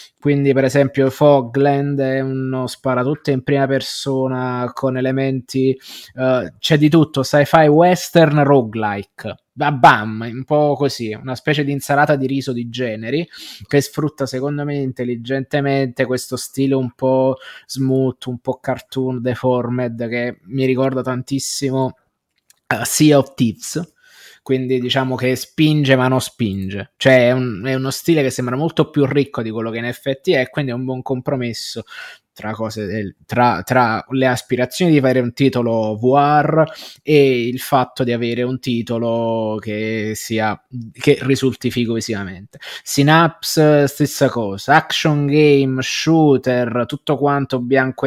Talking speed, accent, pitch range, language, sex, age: 145 wpm, native, 120-145 Hz, Italian, male, 20-39